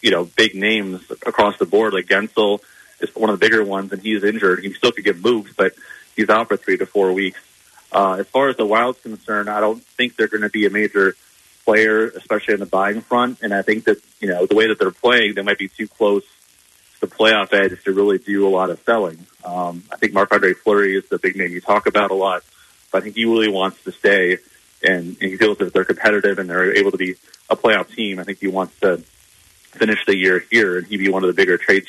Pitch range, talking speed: 95-105 Hz, 255 wpm